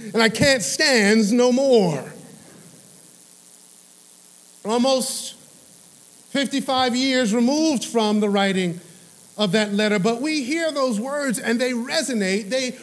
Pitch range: 220-275 Hz